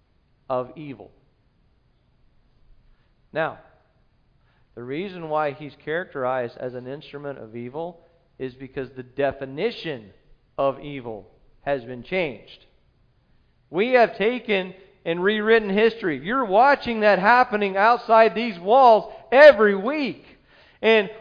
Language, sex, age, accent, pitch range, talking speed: English, male, 40-59, American, 140-235 Hz, 110 wpm